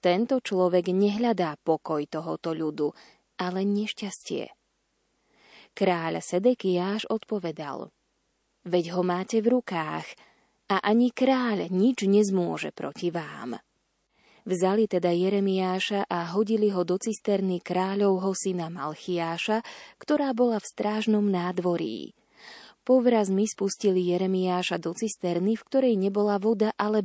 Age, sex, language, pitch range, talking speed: 20-39, female, Slovak, 180-220 Hz, 110 wpm